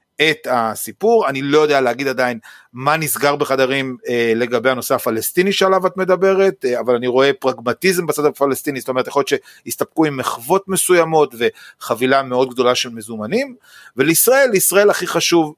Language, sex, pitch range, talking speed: Hebrew, male, 125-180 Hz, 160 wpm